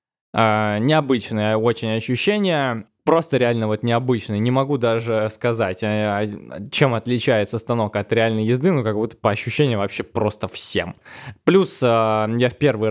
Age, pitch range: 20-39, 105-125 Hz